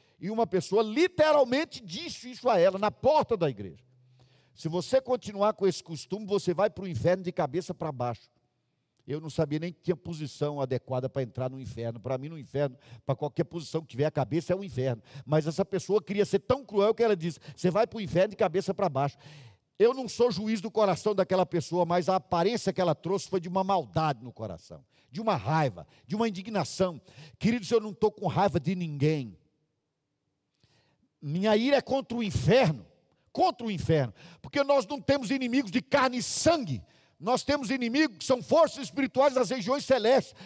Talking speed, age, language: 200 wpm, 50-69, Portuguese